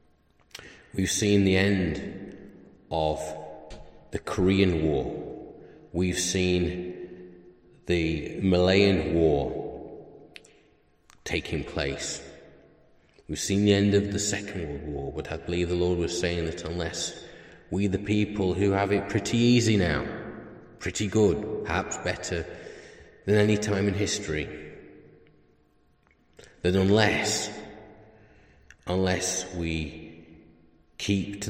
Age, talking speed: 30-49, 110 wpm